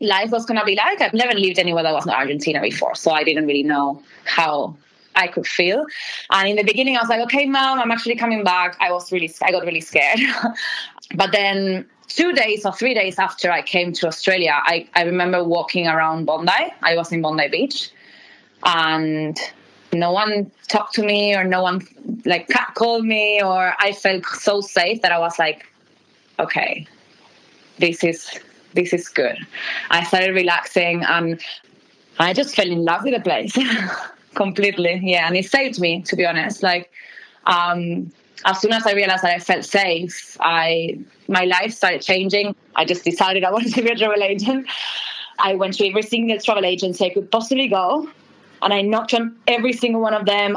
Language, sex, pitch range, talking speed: English, female, 175-215 Hz, 190 wpm